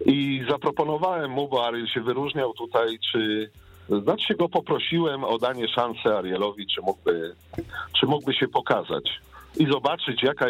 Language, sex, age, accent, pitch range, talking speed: Polish, male, 50-69, native, 100-145 Hz, 145 wpm